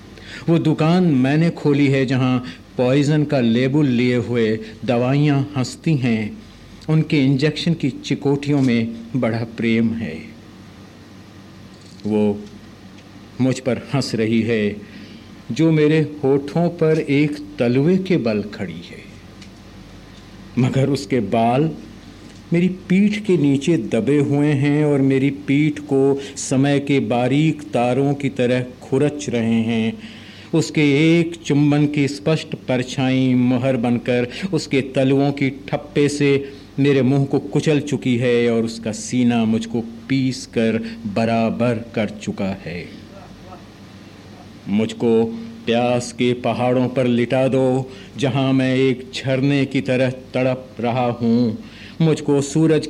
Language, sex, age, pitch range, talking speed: Hindi, male, 50-69, 110-145 Hz, 115 wpm